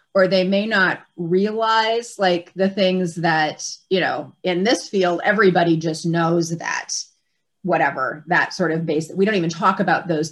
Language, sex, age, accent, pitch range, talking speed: English, female, 30-49, American, 160-190 Hz, 170 wpm